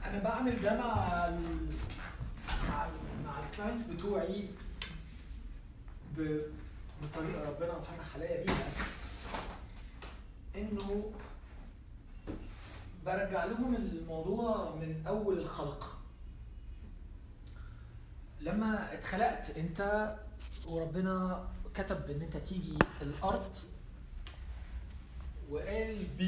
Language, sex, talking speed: Arabic, male, 70 wpm